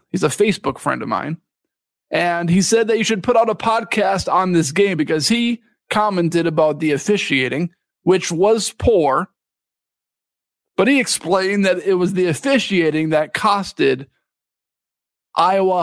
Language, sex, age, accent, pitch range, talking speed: English, male, 40-59, American, 155-200 Hz, 150 wpm